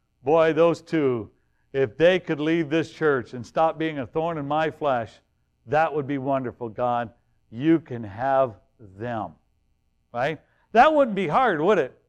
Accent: American